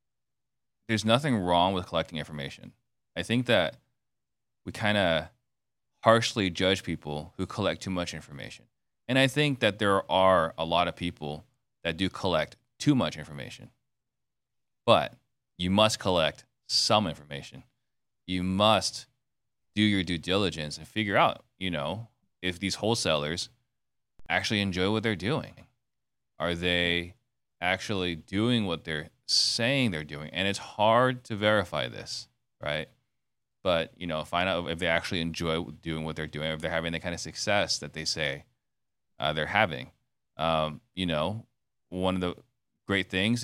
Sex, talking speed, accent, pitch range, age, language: male, 155 wpm, American, 85-120 Hz, 30-49, English